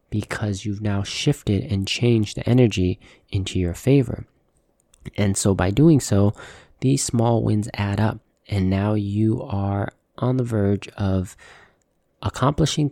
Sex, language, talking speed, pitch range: male, English, 140 wpm, 95-120 Hz